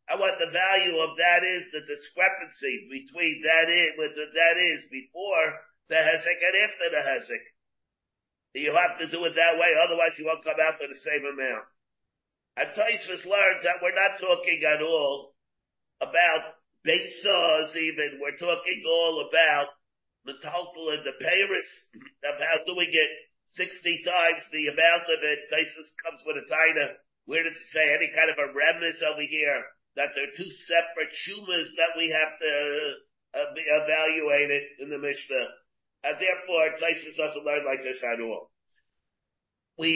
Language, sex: English, male